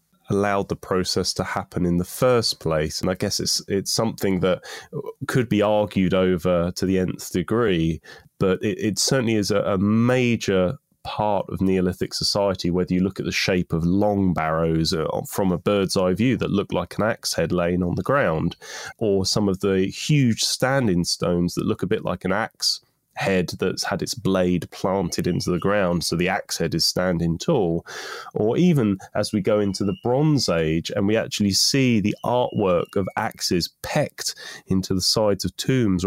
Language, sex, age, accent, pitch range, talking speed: English, male, 20-39, British, 85-105 Hz, 190 wpm